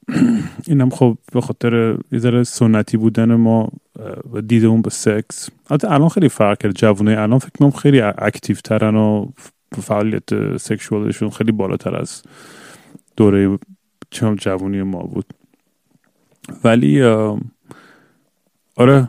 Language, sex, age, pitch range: Persian, male, 30-49, 105-125 Hz